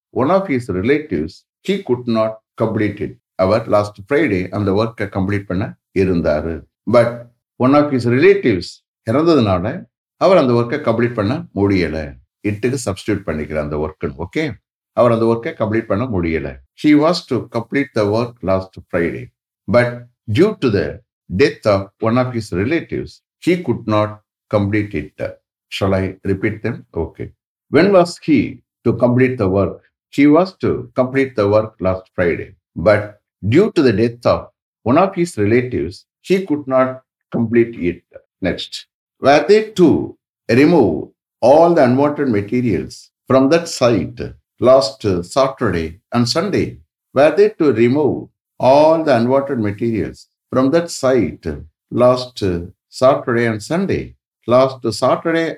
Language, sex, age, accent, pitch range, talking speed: English, male, 60-79, Indian, 100-130 Hz, 135 wpm